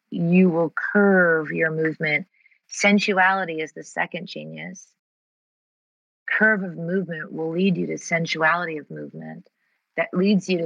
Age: 30-49